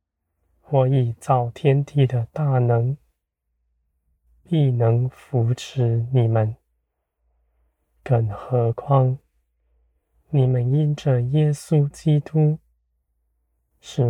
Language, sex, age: Chinese, male, 20-39